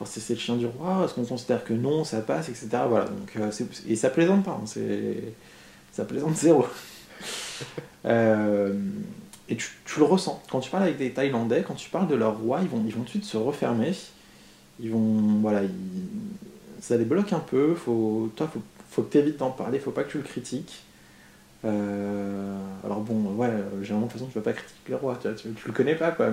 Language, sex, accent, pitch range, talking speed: French, male, French, 115-180 Hz, 220 wpm